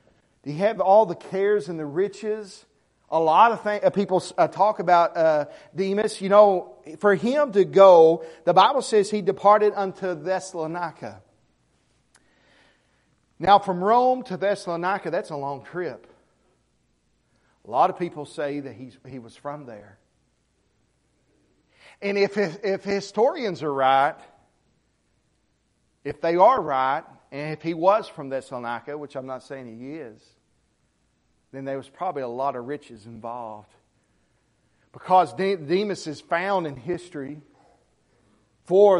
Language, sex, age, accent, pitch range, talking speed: English, male, 40-59, American, 135-200 Hz, 140 wpm